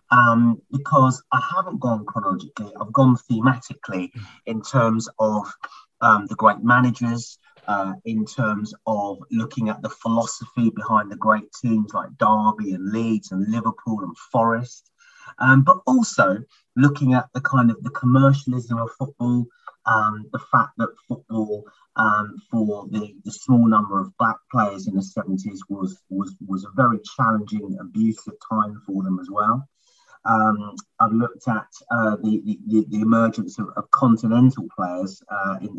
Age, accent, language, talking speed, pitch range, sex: 30-49, British, English, 155 wpm, 105-130 Hz, male